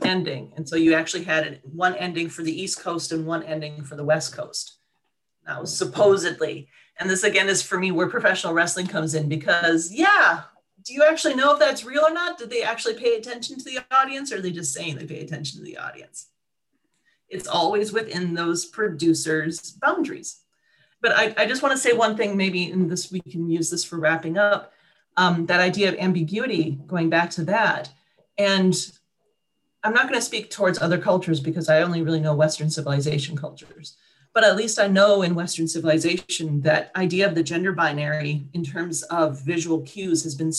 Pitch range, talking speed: 165-210 Hz, 195 wpm